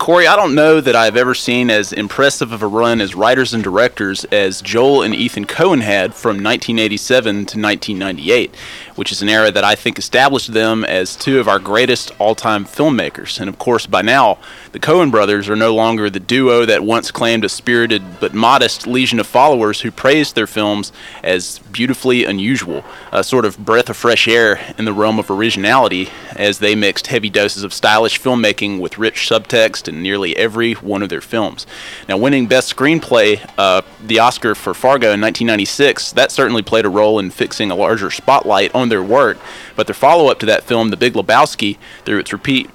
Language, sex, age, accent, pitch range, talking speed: English, male, 30-49, American, 105-125 Hz, 195 wpm